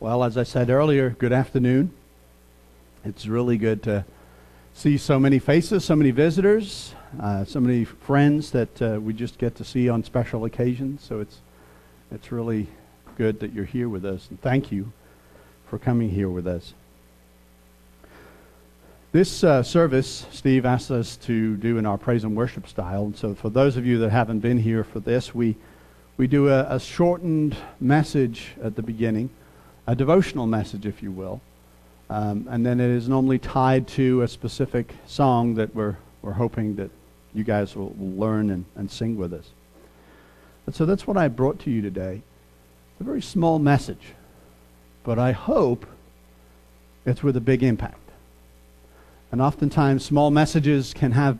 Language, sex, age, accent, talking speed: English, male, 50-69, American, 170 wpm